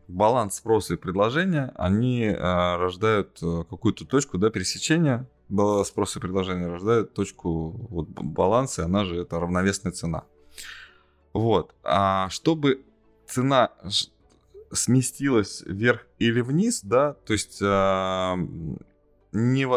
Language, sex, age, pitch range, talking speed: Russian, male, 20-39, 90-125 Hz, 115 wpm